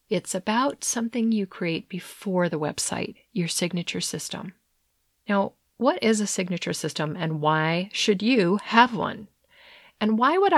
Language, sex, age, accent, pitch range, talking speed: English, female, 40-59, American, 175-235 Hz, 145 wpm